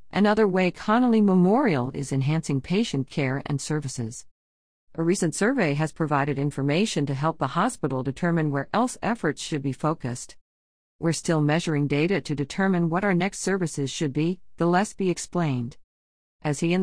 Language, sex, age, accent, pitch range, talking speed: English, female, 50-69, American, 145-190 Hz, 165 wpm